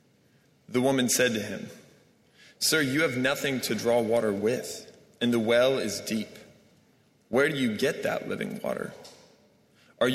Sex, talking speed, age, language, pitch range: male, 155 wpm, 20-39, English, 110-135 Hz